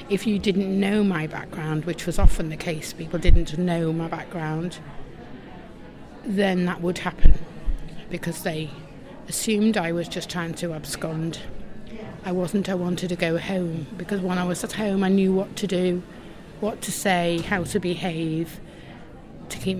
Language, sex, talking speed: English, female, 165 wpm